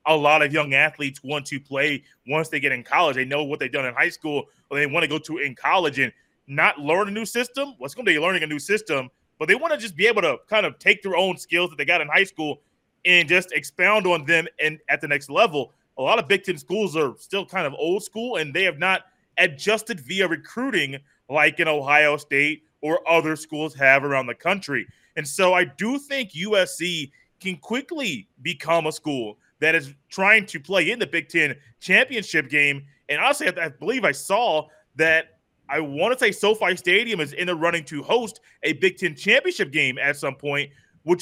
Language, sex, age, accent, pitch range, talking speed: English, male, 20-39, American, 150-190 Hz, 225 wpm